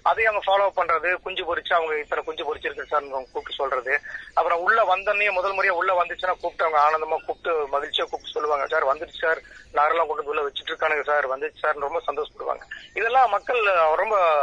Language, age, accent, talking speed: Tamil, 20-39, native, 50 wpm